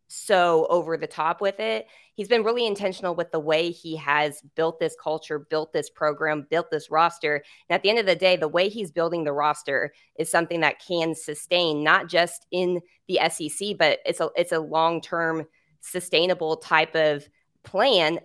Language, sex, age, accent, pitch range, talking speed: English, female, 20-39, American, 150-180 Hz, 185 wpm